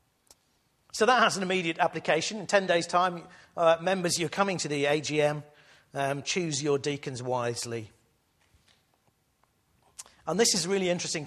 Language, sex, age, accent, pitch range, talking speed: English, male, 50-69, British, 125-165 Hz, 150 wpm